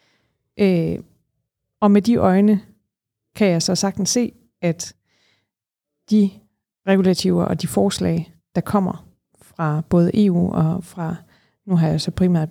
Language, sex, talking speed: Danish, female, 135 wpm